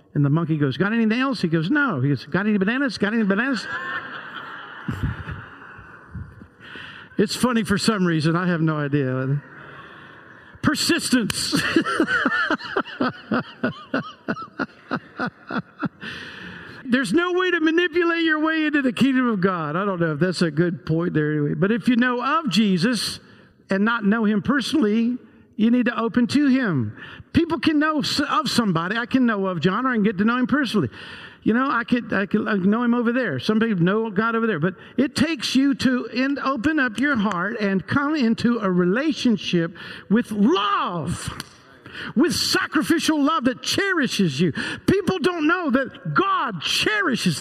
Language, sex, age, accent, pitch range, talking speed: English, male, 50-69, American, 200-325 Hz, 165 wpm